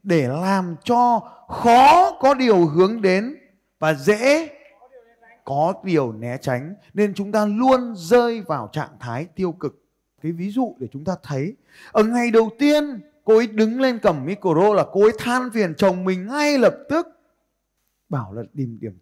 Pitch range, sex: 130-215 Hz, male